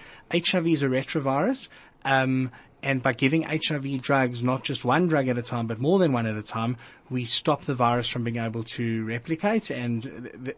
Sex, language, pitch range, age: male, English, 125-160 Hz, 30-49